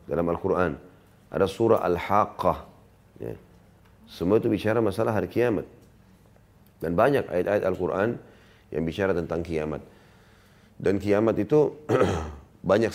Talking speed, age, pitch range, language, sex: 110 wpm, 40-59, 85-105 Hz, Indonesian, male